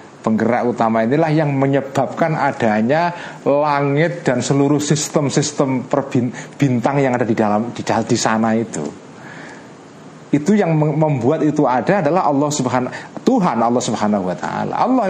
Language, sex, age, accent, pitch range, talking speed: Indonesian, male, 40-59, native, 115-155 Hz, 130 wpm